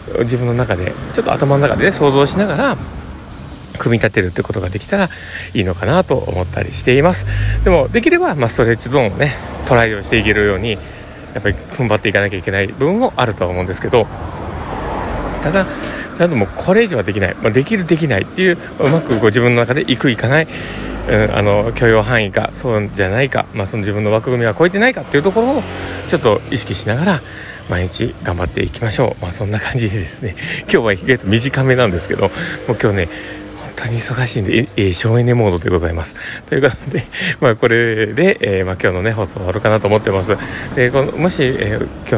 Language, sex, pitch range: Japanese, male, 95-125 Hz